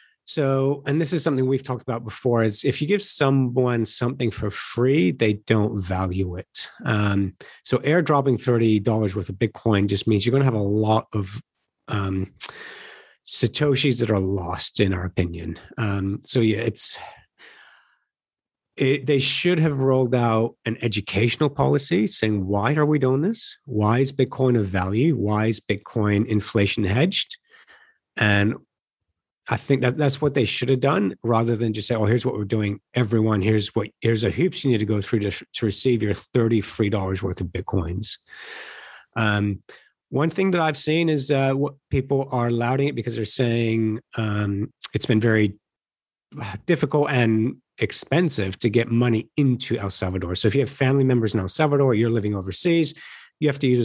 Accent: American